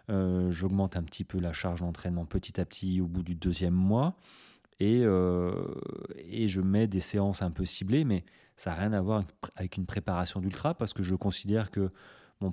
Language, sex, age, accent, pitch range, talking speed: French, male, 30-49, French, 95-120 Hz, 200 wpm